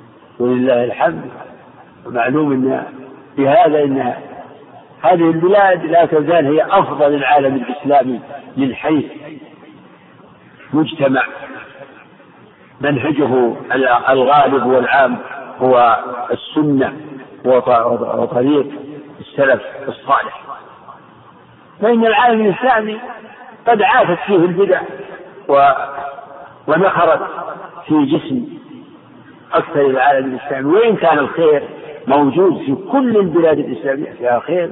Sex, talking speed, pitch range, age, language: male, 85 wpm, 130-185 Hz, 50-69, Arabic